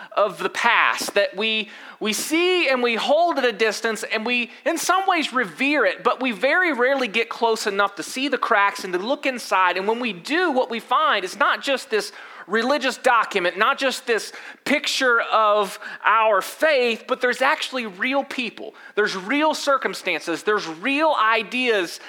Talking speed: 180 wpm